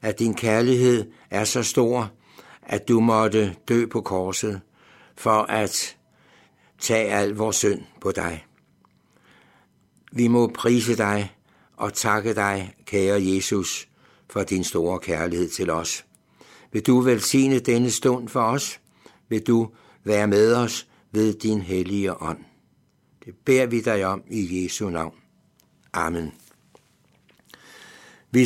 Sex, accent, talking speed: male, native, 130 wpm